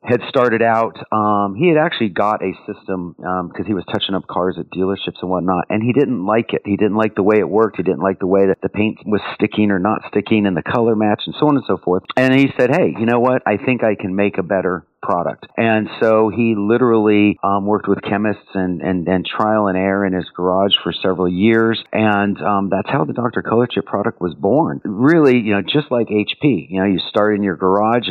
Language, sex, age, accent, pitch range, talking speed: English, male, 40-59, American, 95-115 Hz, 245 wpm